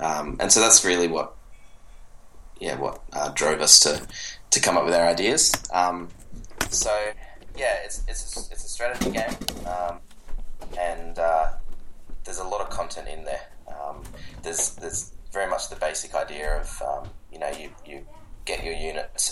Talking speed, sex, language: 170 wpm, male, English